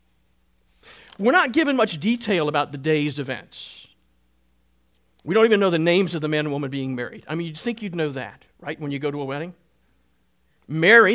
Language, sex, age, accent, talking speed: English, male, 50-69, American, 200 wpm